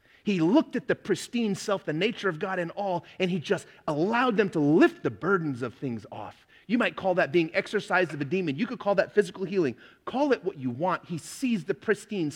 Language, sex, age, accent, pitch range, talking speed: English, male, 30-49, American, 135-190 Hz, 235 wpm